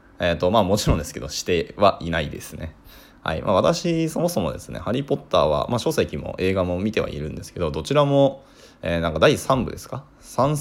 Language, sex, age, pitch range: Japanese, male, 20-39, 90-135 Hz